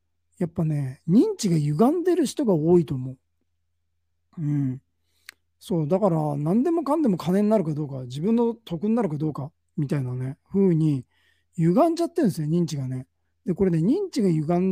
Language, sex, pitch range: Japanese, male, 135-215 Hz